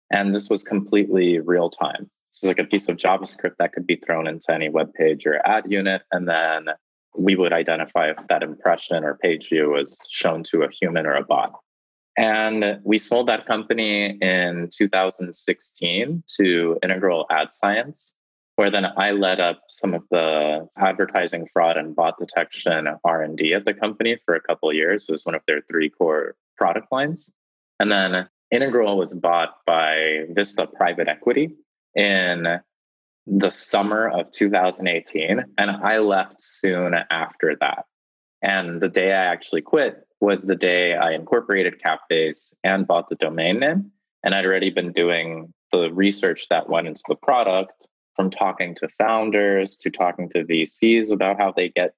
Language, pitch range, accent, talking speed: English, 85-100 Hz, American, 170 wpm